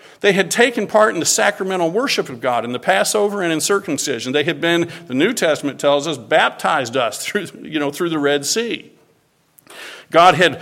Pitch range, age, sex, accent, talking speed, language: 140-195 Hz, 50-69, male, American, 200 wpm, English